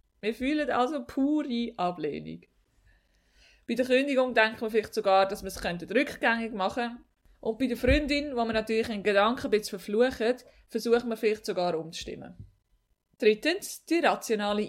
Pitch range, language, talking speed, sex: 195-250 Hz, German, 150 wpm, female